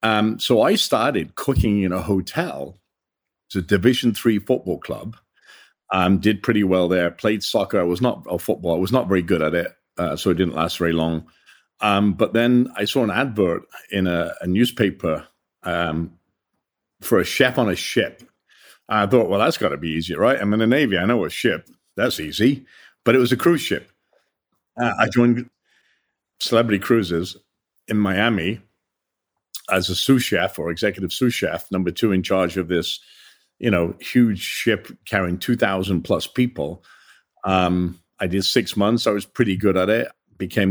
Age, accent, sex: 50-69, British, male